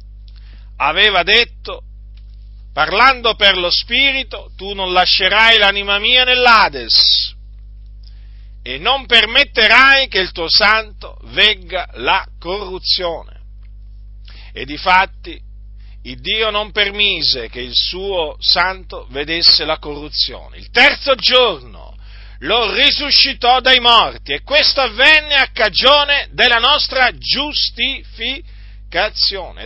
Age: 50-69